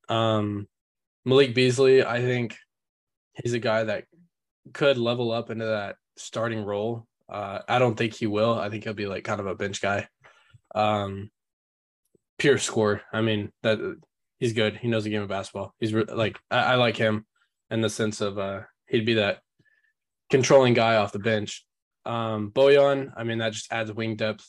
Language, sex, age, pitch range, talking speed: English, male, 10-29, 105-125 Hz, 185 wpm